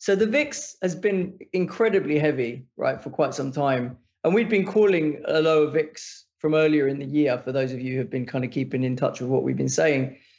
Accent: British